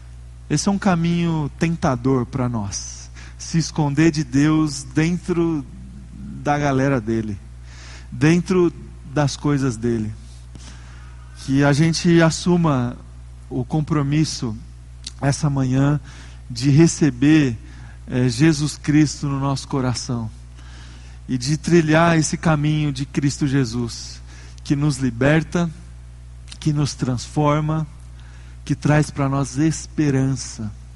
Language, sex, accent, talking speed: Portuguese, male, Brazilian, 105 wpm